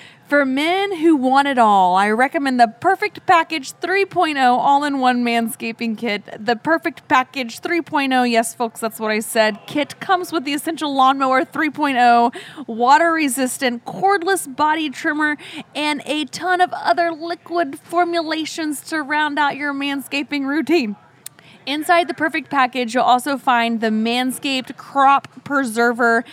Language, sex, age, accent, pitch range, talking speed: English, female, 20-39, American, 230-305 Hz, 145 wpm